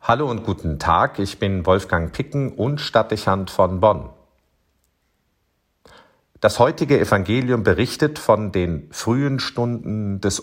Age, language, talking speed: 50-69, German, 120 wpm